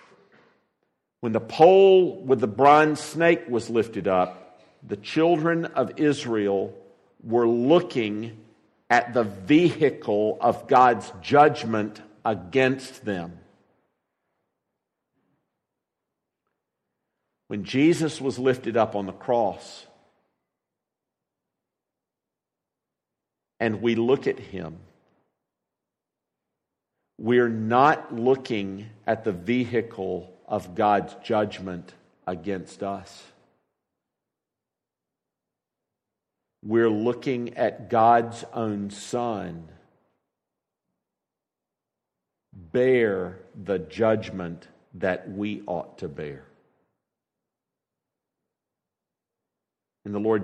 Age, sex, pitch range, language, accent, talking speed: 50-69, male, 100-125 Hz, English, American, 75 wpm